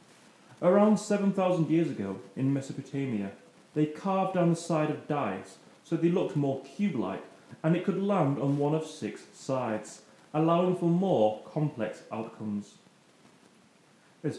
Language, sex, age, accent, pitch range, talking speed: English, male, 30-49, British, 120-180 Hz, 140 wpm